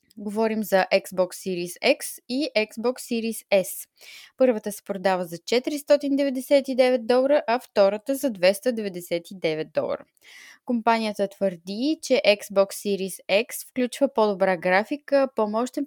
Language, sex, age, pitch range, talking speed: Bulgarian, female, 20-39, 195-255 Hz, 115 wpm